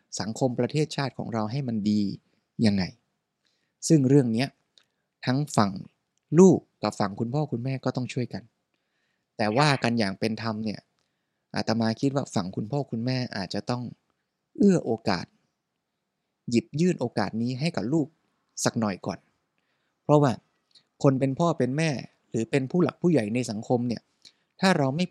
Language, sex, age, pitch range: Thai, male, 20-39, 110-145 Hz